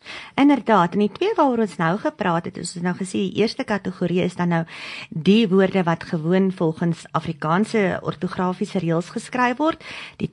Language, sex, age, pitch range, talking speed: English, female, 40-59, 180-240 Hz, 185 wpm